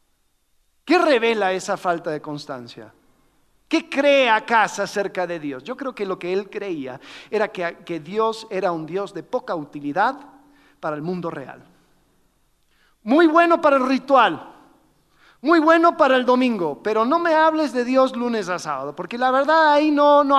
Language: Spanish